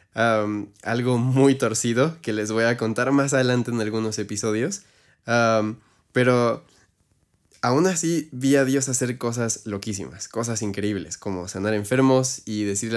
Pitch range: 110-130 Hz